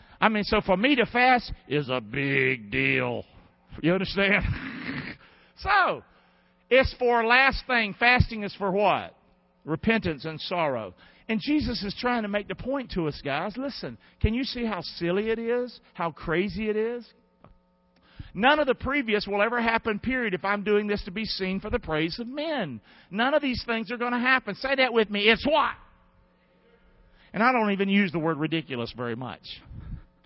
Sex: male